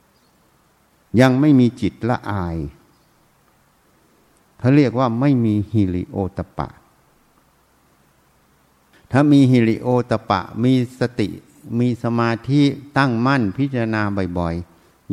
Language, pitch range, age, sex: Thai, 105-135 Hz, 60-79, male